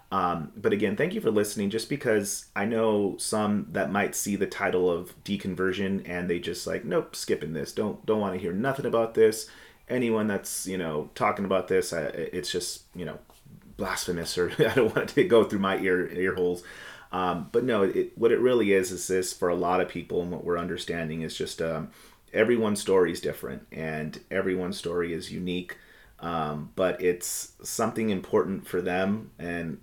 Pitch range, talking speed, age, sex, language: 90-100 Hz, 195 wpm, 30-49, male, English